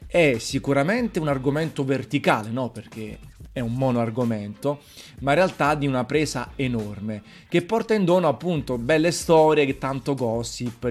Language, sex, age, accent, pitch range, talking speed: Italian, male, 30-49, native, 120-155 Hz, 145 wpm